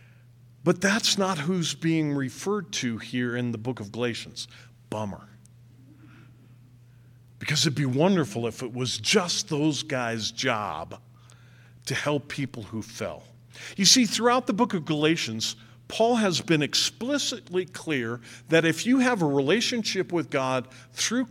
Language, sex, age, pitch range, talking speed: English, male, 50-69, 120-185 Hz, 145 wpm